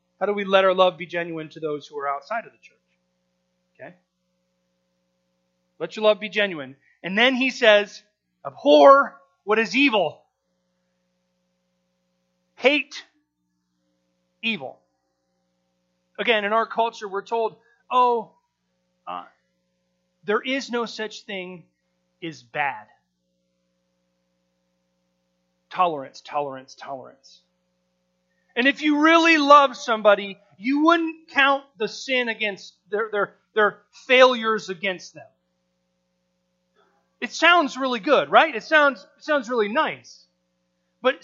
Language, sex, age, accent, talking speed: English, male, 30-49, American, 115 wpm